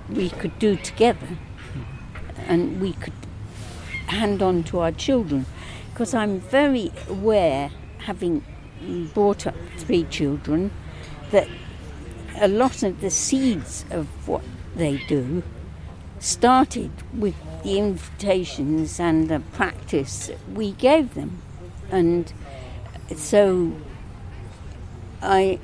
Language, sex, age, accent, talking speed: English, female, 60-79, British, 105 wpm